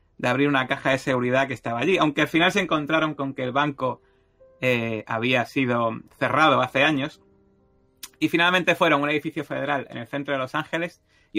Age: 30-49